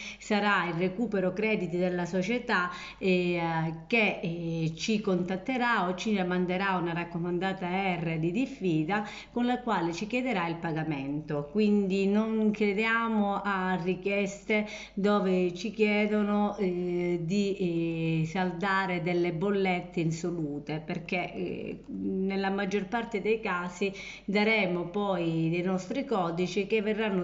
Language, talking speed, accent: Italian, 120 wpm, native